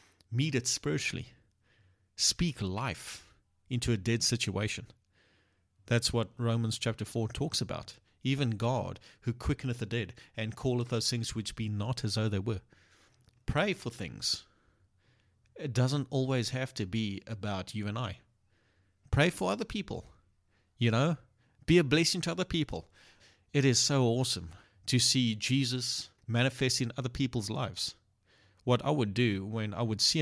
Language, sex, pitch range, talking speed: English, male, 105-125 Hz, 155 wpm